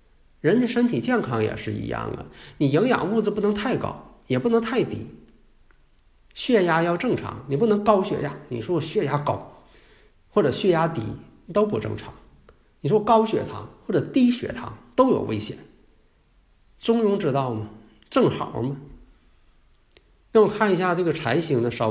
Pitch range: 110-165 Hz